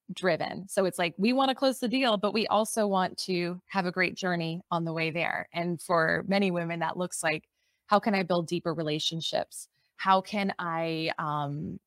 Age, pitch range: 20-39, 165-200 Hz